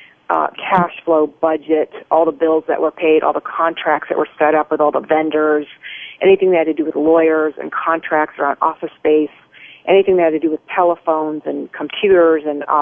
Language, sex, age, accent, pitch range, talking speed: English, female, 40-59, American, 155-170 Hz, 205 wpm